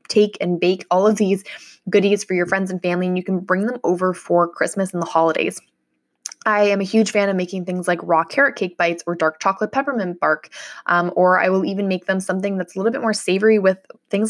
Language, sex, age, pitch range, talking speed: English, female, 20-39, 180-205 Hz, 240 wpm